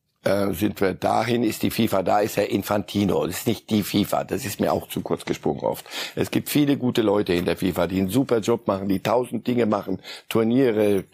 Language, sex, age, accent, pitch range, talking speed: German, male, 60-79, German, 95-115 Hz, 220 wpm